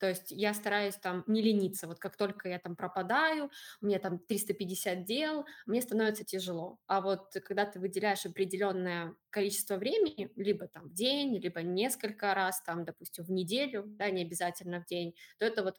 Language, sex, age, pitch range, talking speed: Russian, female, 20-39, 185-210 Hz, 180 wpm